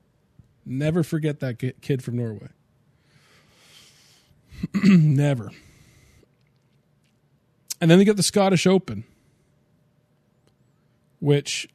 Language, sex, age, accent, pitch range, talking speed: English, male, 40-59, American, 130-155 Hz, 75 wpm